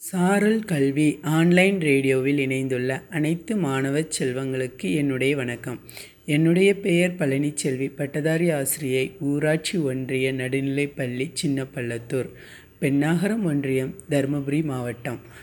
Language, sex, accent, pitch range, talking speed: Tamil, female, native, 135-180 Hz, 95 wpm